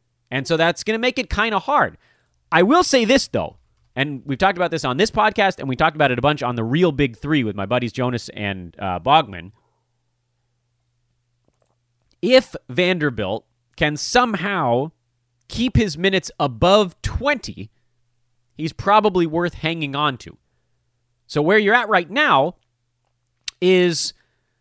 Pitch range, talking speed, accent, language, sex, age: 120-175 Hz, 155 wpm, American, English, male, 30-49